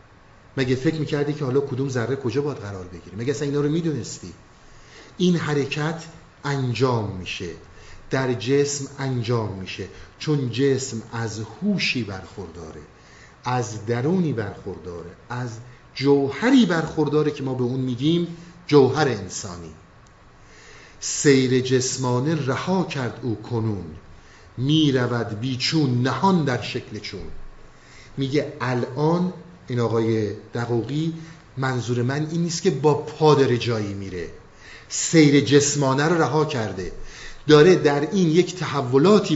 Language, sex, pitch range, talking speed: Persian, male, 120-165 Hz, 120 wpm